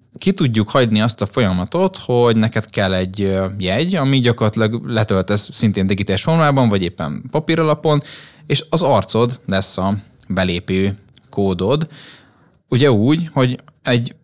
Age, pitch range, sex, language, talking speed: 20-39, 95-130 Hz, male, Hungarian, 135 wpm